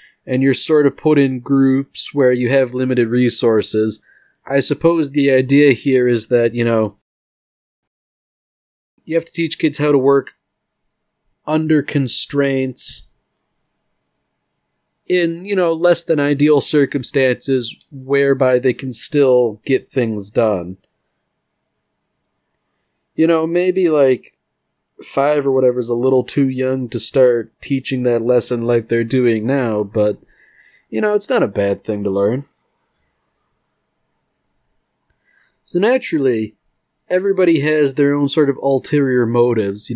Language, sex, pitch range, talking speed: English, male, 120-145 Hz, 130 wpm